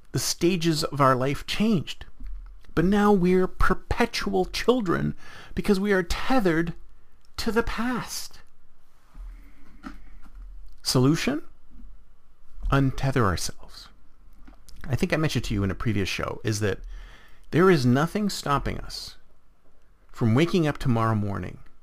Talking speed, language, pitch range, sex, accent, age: 120 wpm, English, 105-170 Hz, male, American, 50-69